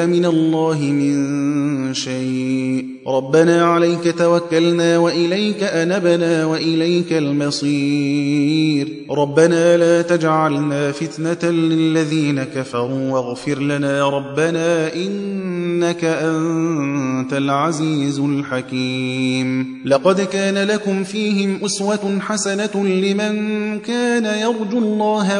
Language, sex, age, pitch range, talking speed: Persian, male, 30-49, 140-170 Hz, 85 wpm